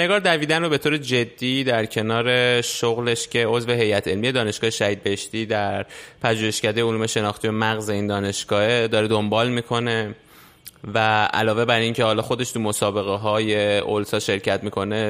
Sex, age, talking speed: male, 20-39, 155 wpm